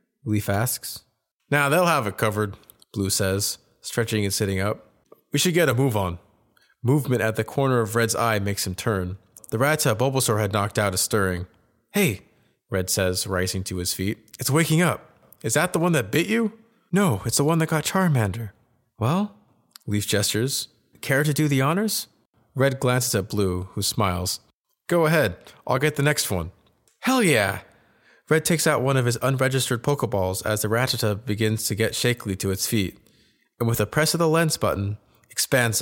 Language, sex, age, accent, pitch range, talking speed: English, male, 30-49, American, 100-135 Hz, 185 wpm